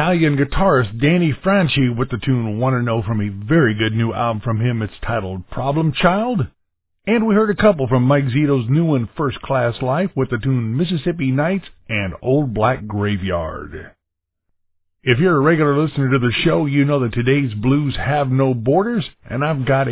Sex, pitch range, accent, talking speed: male, 110-145 Hz, American, 190 wpm